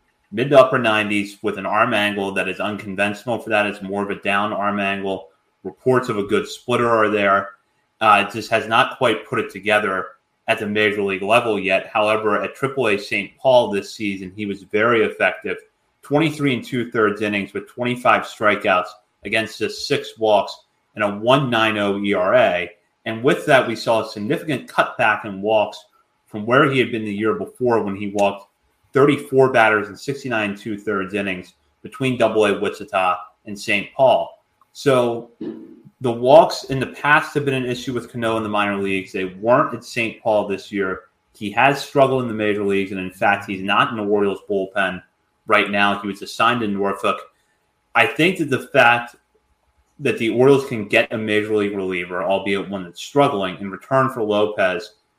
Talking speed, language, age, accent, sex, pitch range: 185 wpm, English, 30-49, American, male, 100-120 Hz